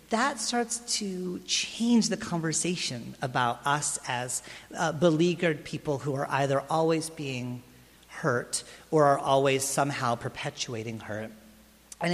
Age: 40-59